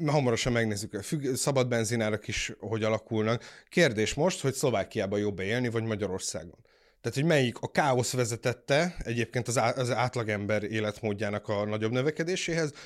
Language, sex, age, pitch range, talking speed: Hungarian, male, 30-49, 105-135 Hz, 135 wpm